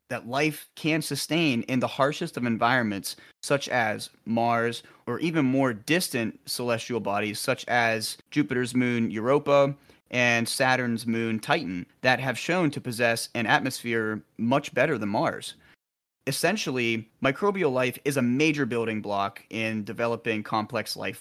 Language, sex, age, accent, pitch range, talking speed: English, male, 30-49, American, 115-145 Hz, 140 wpm